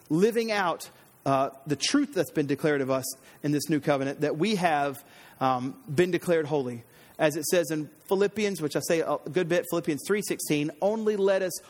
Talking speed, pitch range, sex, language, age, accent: 190 wpm, 150-205 Hz, male, English, 30-49, American